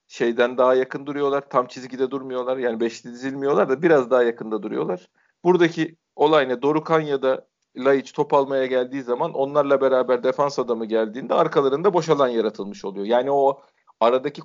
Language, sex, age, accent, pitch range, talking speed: Turkish, male, 40-59, native, 125-150 Hz, 160 wpm